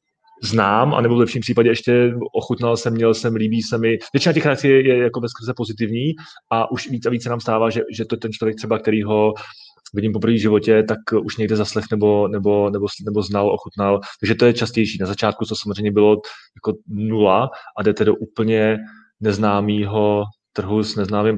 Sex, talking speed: male, 195 wpm